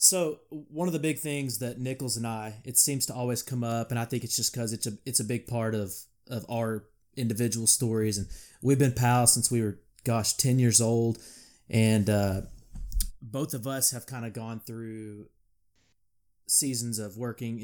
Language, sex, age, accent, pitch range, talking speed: English, male, 20-39, American, 110-130 Hz, 195 wpm